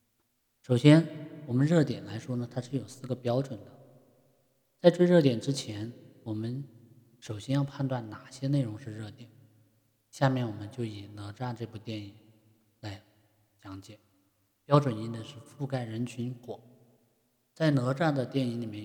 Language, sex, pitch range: Chinese, male, 110-135 Hz